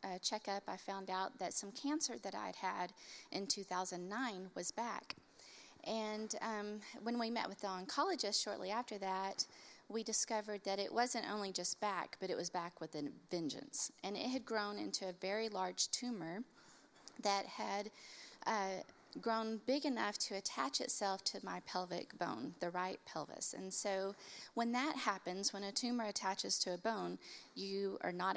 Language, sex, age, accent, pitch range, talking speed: English, female, 30-49, American, 190-235 Hz, 170 wpm